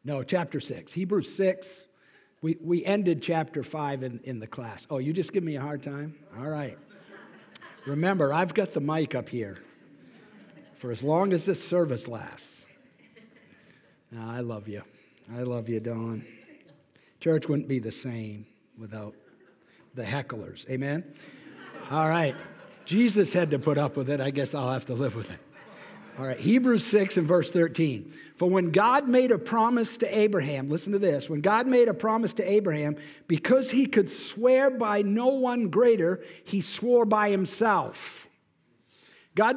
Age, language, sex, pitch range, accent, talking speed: 60-79, English, male, 140-220 Hz, American, 165 wpm